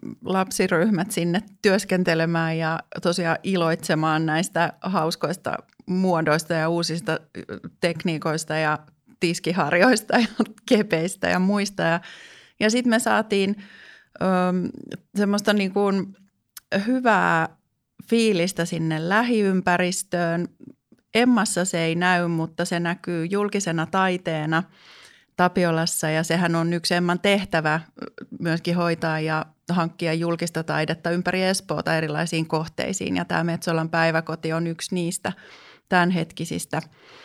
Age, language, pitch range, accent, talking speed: 30-49, Finnish, 165-195 Hz, native, 100 wpm